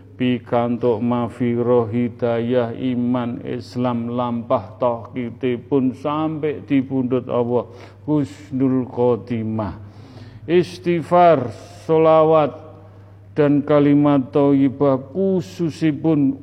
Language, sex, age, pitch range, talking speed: Indonesian, male, 50-69, 120-140 Hz, 60 wpm